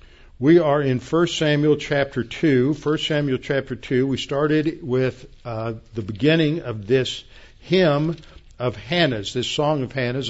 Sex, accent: male, American